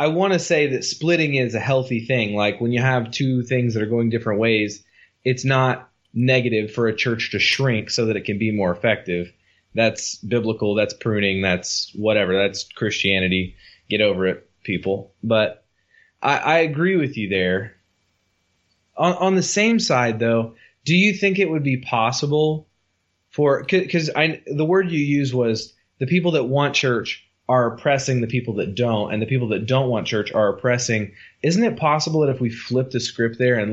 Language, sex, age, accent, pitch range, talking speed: English, male, 20-39, American, 105-135 Hz, 190 wpm